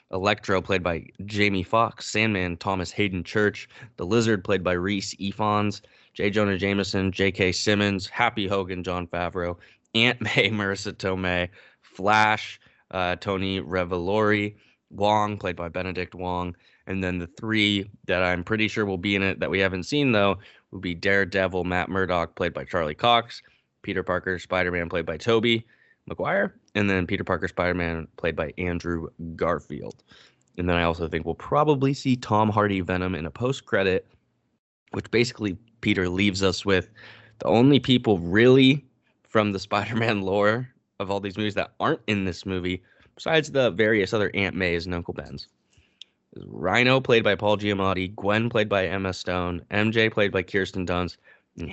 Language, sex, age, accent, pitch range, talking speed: English, male, 20-39, American, 90-105 Hz, 165 wpm